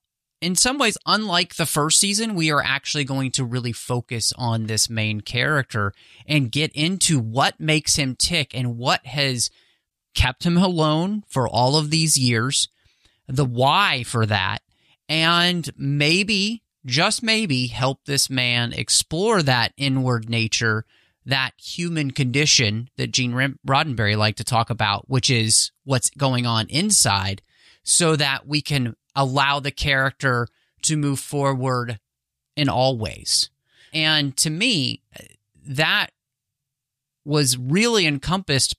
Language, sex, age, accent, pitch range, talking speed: English, male, 30-49, American, 115-150 Hz, 135 wpm